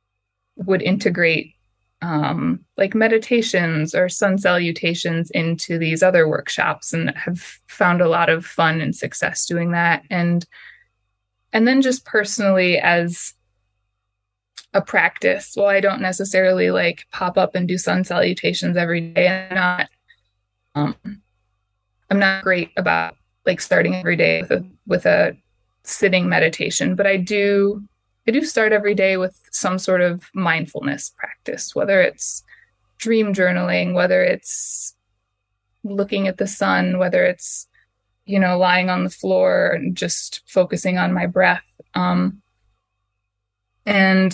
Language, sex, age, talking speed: English, female, 20-39, 135 wpm